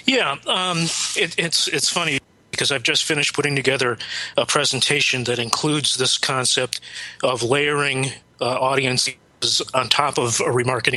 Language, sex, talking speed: English, male, 150 wpm